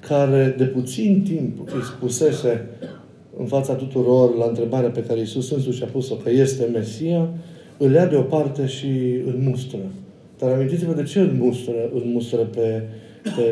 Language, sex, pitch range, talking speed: Romanian, male, 120-150 Hz, 150 wpm